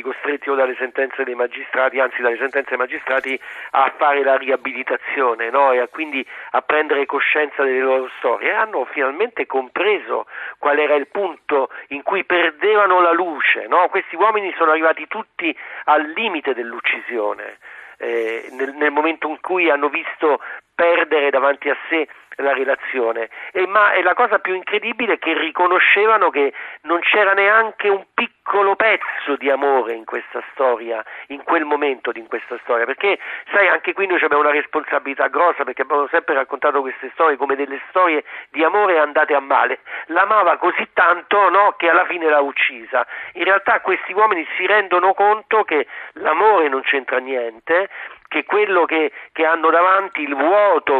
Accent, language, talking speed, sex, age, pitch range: native, Italian, 155 wpm, male, 40-59, 135-180 Hz